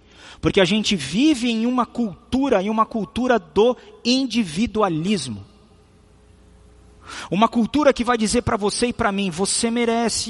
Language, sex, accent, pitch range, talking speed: Portuguese, male, Brazilian, 175-235 Hz, 140 wpm